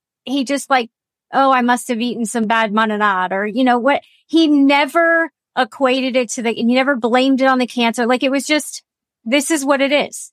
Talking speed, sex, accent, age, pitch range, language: 215 wpm, female, American, 30-49, 220-265 Hz, English